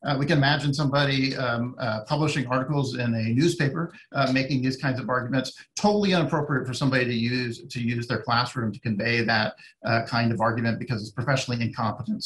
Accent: American